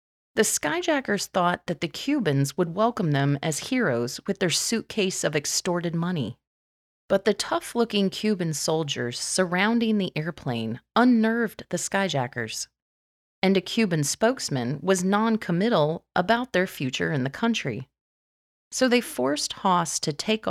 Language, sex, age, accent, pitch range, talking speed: English, female, 30-49, American, 145-205 Hz, 135 wpm